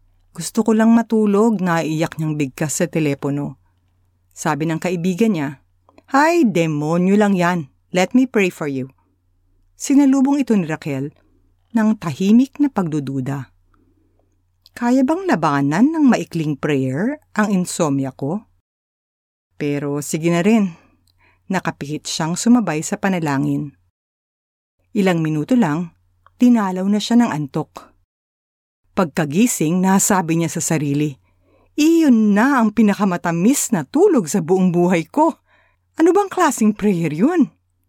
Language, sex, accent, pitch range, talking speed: Filipino, female, native, 140-225 Hz, 120 wpm